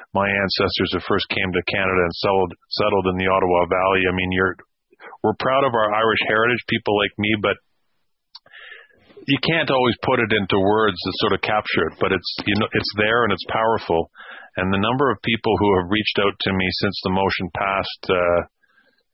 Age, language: 40-59, English